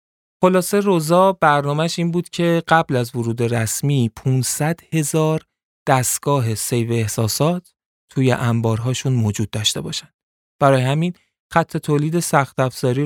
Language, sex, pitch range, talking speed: Persian, male, 115-150 Hz, 120 wpm